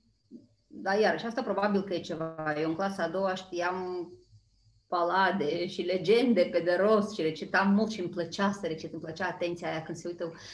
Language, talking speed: Romanian, 200 wpm